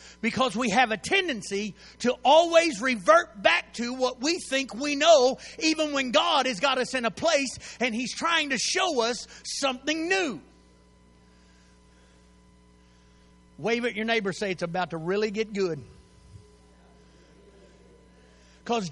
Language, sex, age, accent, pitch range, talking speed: English, male, 50-69, American, 200-305 Hz, 145 wpm